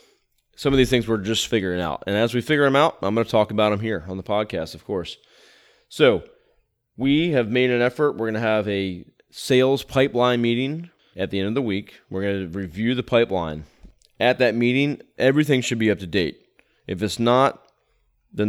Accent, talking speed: American, 210 wpm